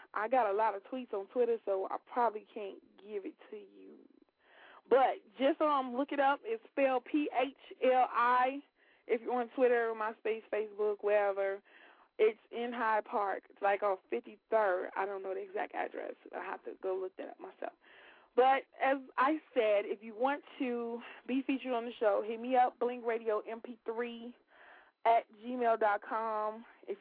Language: English